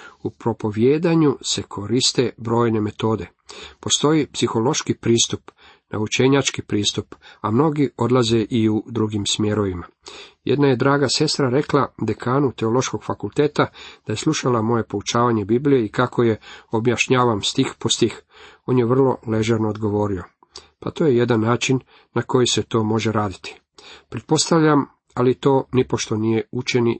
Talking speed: 135 wpm